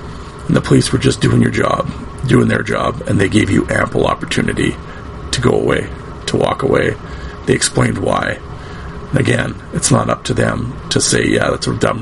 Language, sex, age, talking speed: English, male, 40-59, 190 wpm